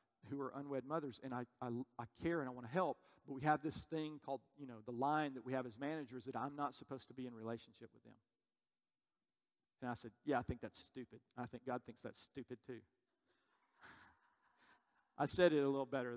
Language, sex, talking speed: English, male, 225 wpm